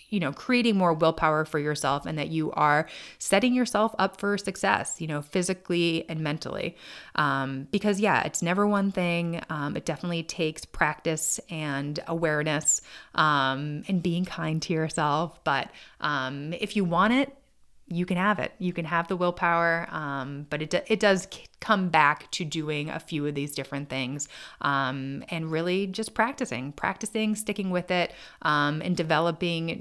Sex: female